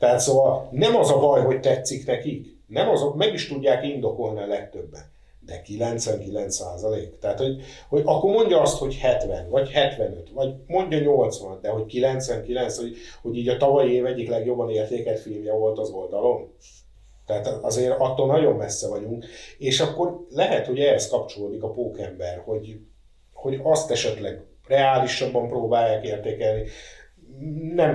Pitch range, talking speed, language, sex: 110-140 Hz, 150 wpm, Hungarian, male